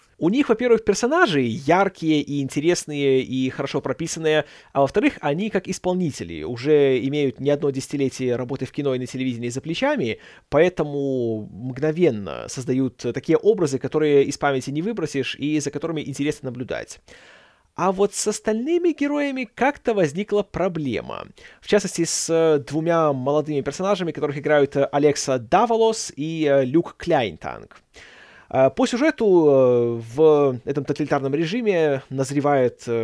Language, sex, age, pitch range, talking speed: Russian, male, 30-49, 135-195 Hz, 130 wpm